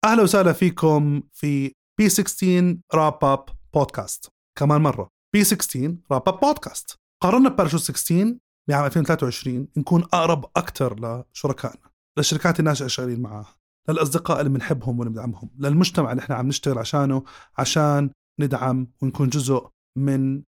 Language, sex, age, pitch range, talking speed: Arabic, male, 30-49, 130-175 Hz, 125 wpm